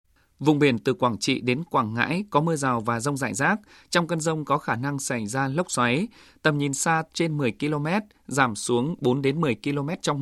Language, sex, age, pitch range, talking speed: Vietnamese, male, 20-39, 125-160 Hz, 225 wpm